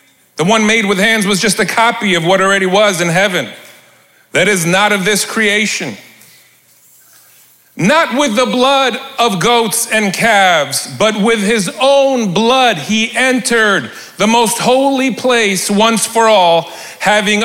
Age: 40-59